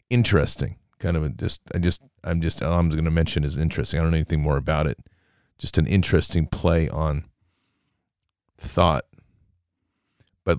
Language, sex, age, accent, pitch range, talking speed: English, male, 40-59, American, 80-100 Hz, 160 wpm